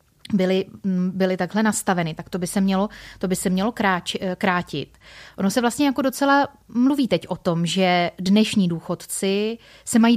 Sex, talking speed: female, 150 wpm